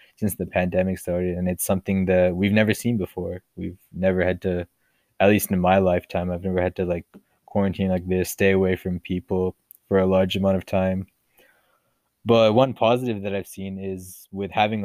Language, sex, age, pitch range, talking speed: English, male, 20-39, 95-105 Hz, 195 wpm